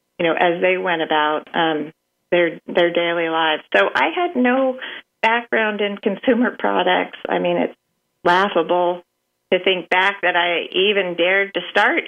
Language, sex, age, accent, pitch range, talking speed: English, female, 40-59, American, 170-195 Hz, 160 wpm